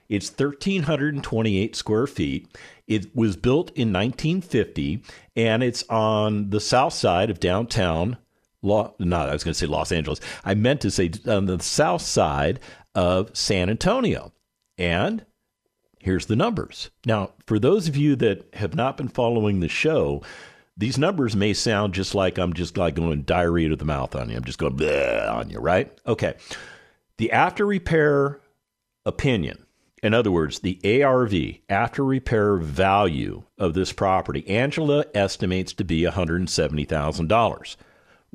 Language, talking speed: English, 150 wpm